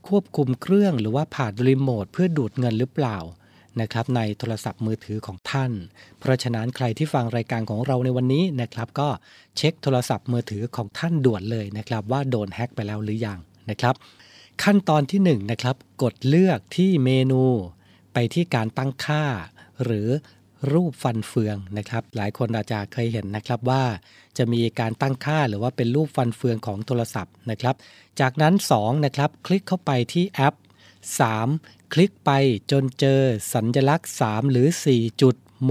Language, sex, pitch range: Thai, male, 110-145 Hz